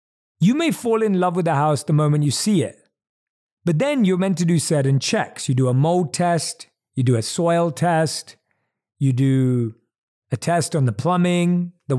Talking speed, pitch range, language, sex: 195 wpm, 130-180 Hz, English, male